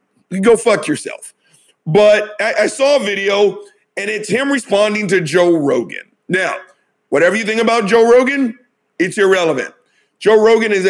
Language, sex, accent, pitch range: English, male, American, 180-225 Hz